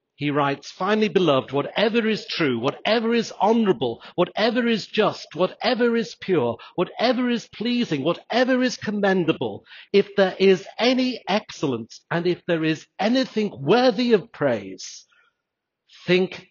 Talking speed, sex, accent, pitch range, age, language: 130 wpm, male, British, 145-205 Hz, 50-69, English